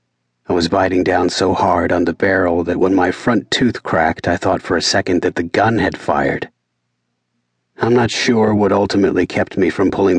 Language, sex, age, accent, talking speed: English, male, 40-59, American, 200 wpm